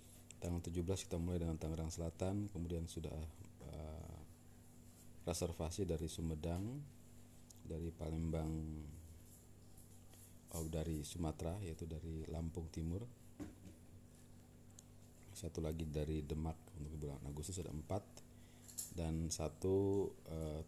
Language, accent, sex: Indonesian, native, male